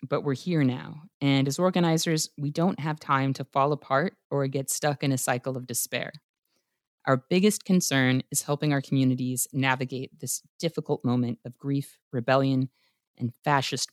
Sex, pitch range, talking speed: female, 130-155 Hz, 165 wpm